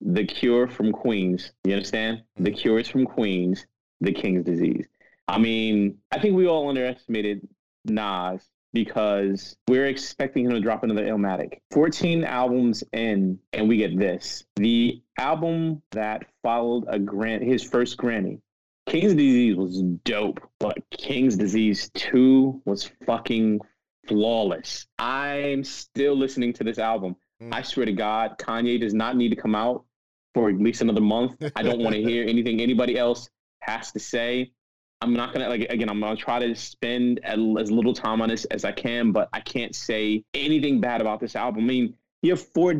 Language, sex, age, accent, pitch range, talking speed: English, male, 30-49, American, 110-140 Hz, 170 wpm